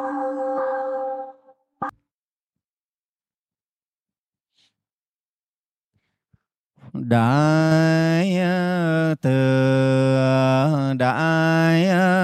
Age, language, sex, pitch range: 40-59, Vietnamese, male, 160-200 Hz